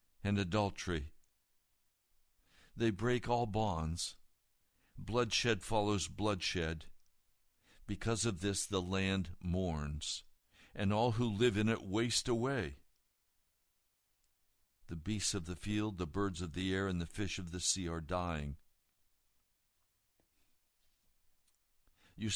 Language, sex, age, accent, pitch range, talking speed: English, male, 60-79, American, 90-115 Hz, 115 wpm